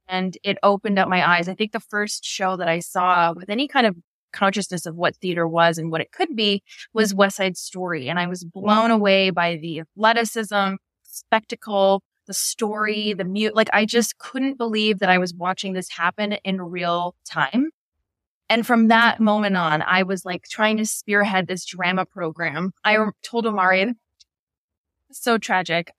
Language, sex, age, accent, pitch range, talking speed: English, female, 20-39, American, 180-220 Hz, 180 wpm